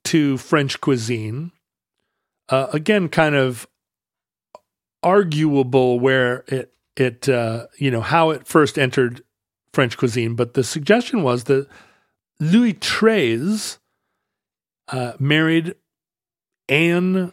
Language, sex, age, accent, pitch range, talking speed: English, male, 40-59, American, 120-155 Hz, 105 wpm